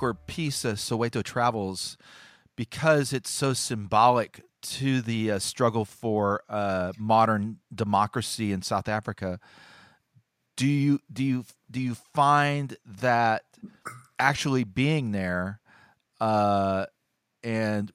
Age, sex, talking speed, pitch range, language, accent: 40-59, male, 110 wpm, 105-135 Hz, English, American